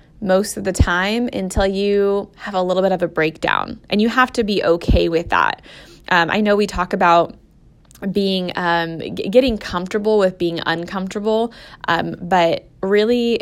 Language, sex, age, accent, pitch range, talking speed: English, female, 20-39, American, 170-205 Hz, 165 wpm